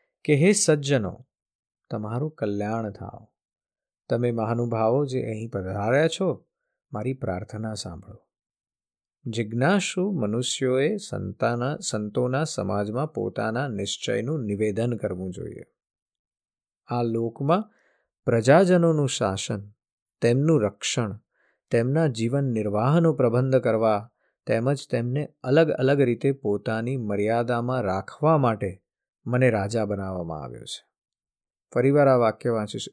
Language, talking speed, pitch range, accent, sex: Gujarati, 70 wpm, 110-150 Hz, native, male